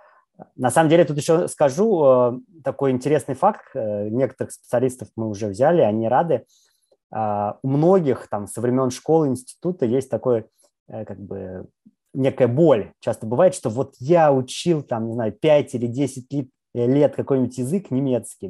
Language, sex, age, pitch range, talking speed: Russian, male, 20-39, 120-150 Hz, 150 wpm